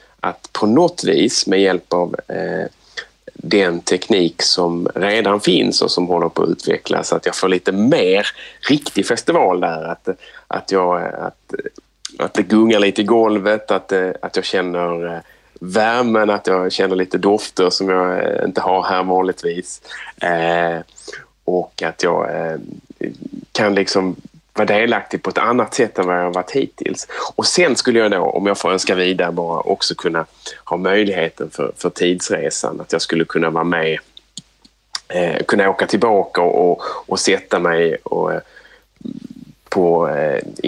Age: 30-49